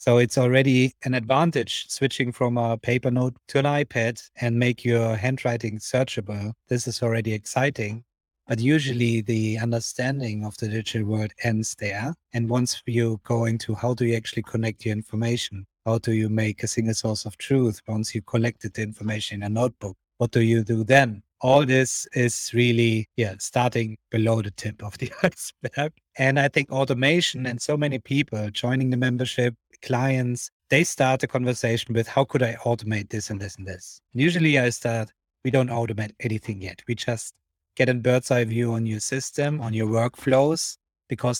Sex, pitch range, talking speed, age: male, 110-130 Hz, 185 wpm, 30-49